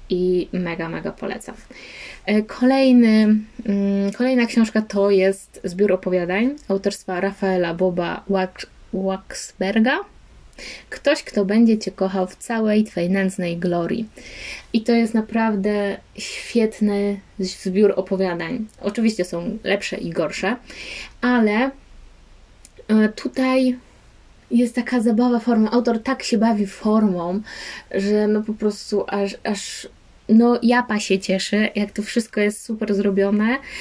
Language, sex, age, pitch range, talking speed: Polish, female, 20-39, 195-235 Hz, 115 wpm